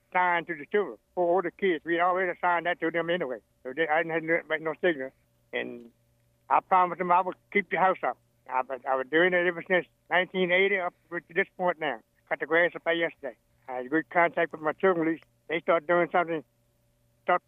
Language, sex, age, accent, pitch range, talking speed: English, male, 60-79, American, 140-180 Hz, 225 wpm